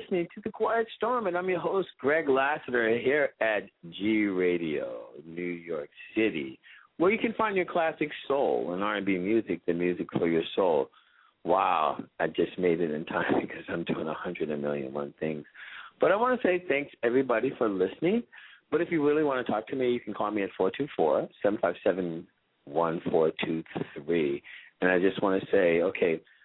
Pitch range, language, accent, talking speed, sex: 90-140 Hz, English, American, 200 wpm, male